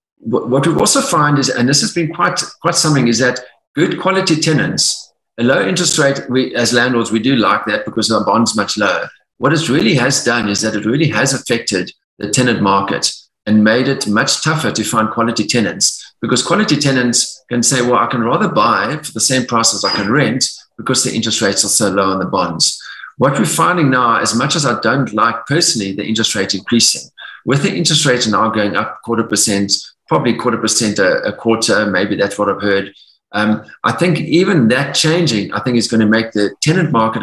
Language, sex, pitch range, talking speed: English, male, 105-135 Hz, 215 wpm